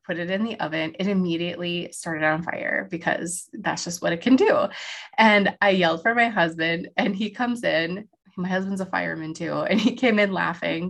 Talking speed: 205 wpm